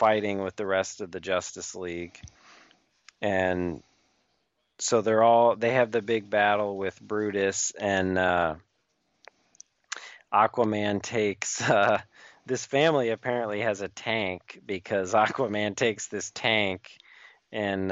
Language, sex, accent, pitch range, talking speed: English, male, American, 90-105 Hz, 120 wpm